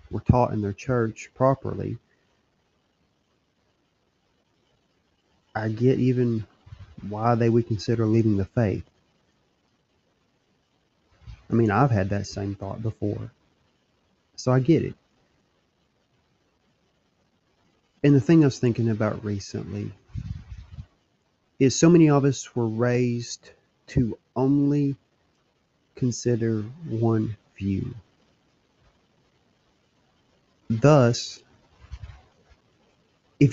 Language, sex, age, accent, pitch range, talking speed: English, male, 30-49, American, 105-130 Hz, 90 wpm